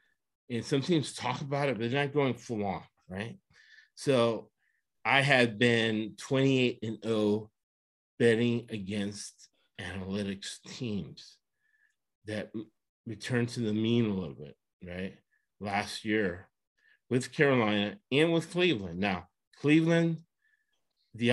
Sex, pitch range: male, 105-135 Hz